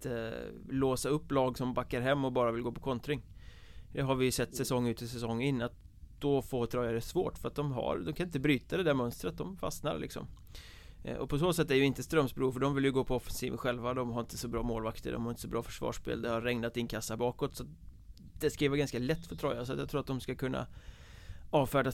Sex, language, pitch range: male, Swedish, 115-135 Hz